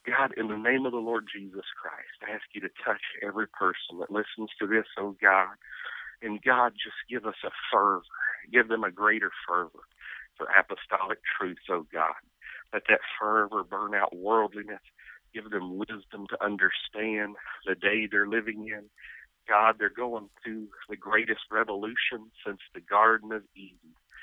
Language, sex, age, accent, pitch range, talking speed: English, male, 50-69, American, 105-115 Hz, 165 wpm